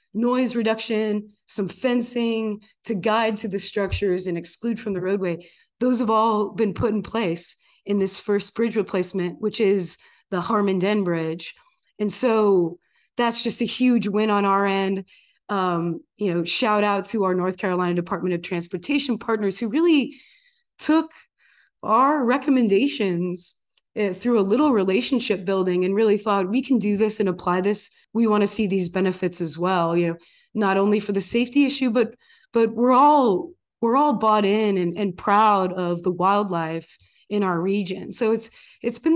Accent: American